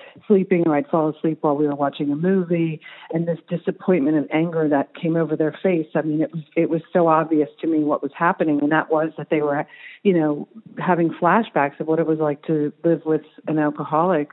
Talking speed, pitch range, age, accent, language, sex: 225 wpm, 150-180 Hz, 50-69, American, English, female